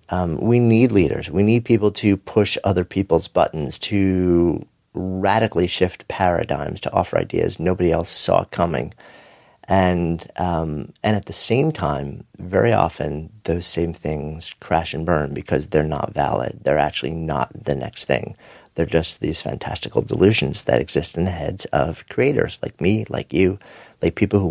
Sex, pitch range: male, 80-100 Hz